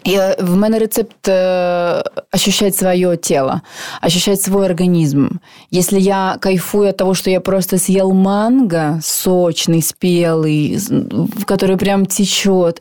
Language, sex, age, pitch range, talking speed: Ukrainian, female, 20-39, 170-205 Hz, 125 wpm